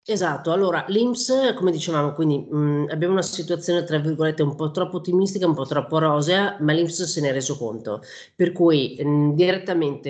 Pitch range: 150-180 Hz